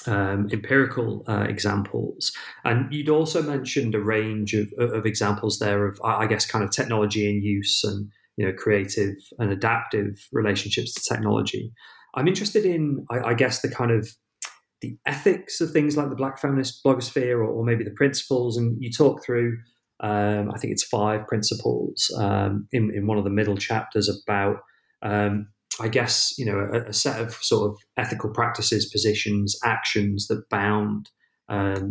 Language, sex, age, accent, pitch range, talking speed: English, male, 30-49, British, 105-120 Hz, 170 wpm